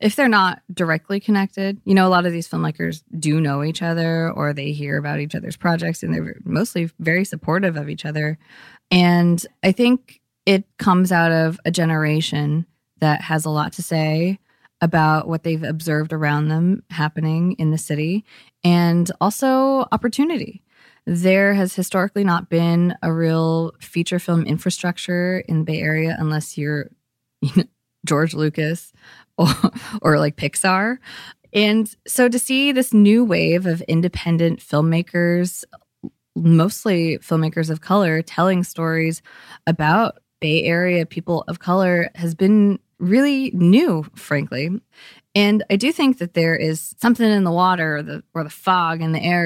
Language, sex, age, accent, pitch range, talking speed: English, female, 20-39, American, 160-195 Hz, 150 wpm